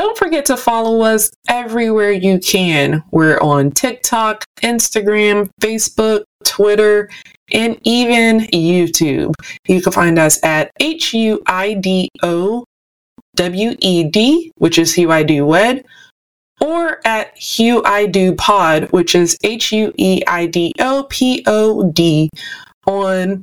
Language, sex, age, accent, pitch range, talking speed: English, female, 20-39, American, 180-250 Hz, 115 wpm